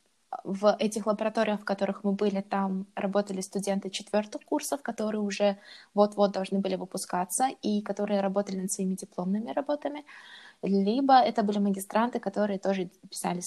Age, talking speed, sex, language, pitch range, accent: 20-39, 145 wpm, female, Russian, 195-215 Hz, native